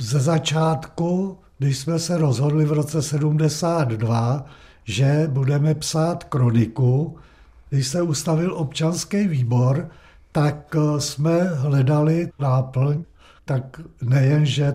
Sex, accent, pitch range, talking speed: male, native, 130-155 Hz, 100 wpm